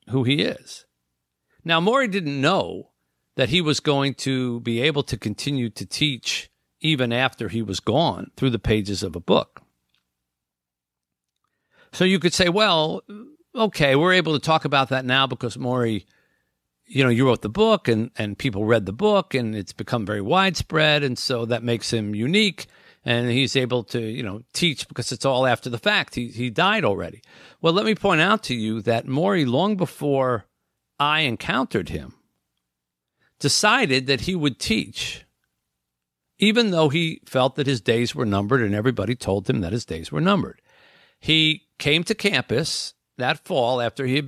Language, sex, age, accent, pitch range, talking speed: English, male, 50-69, American, 110-150 Hz, 175 wpm